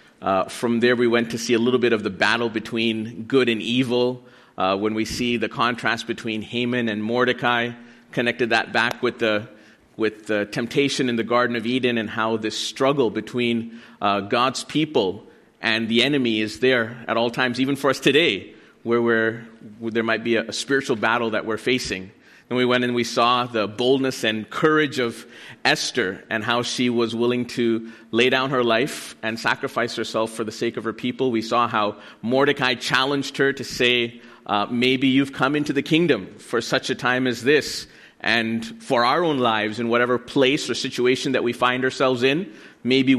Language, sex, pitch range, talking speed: English, male, 115-130 Hz, 195 wpm